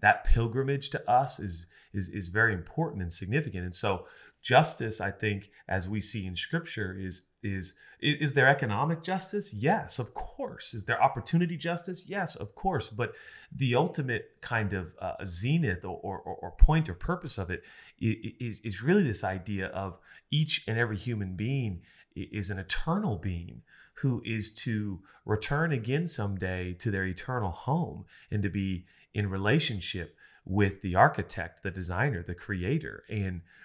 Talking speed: 160 wpm